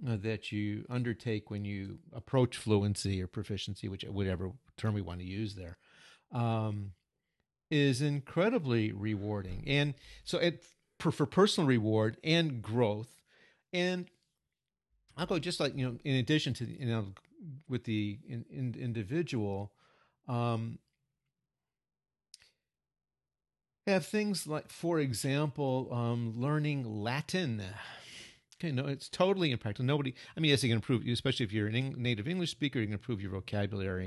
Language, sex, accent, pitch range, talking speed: English, male, American, 110-150 Hz, 135 wpm